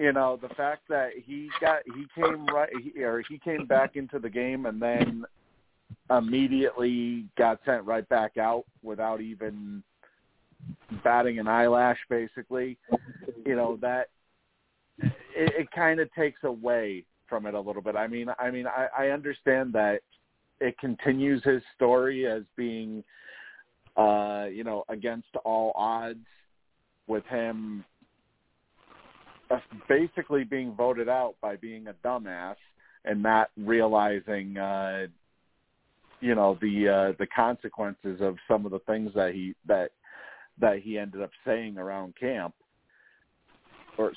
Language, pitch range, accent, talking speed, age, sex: English, 105-130 Hz, American, 140 wpm, 40-59, male